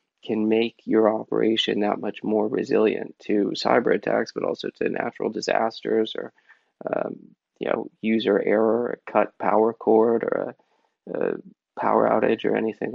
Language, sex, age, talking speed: English, male, 20-39, 155 wpm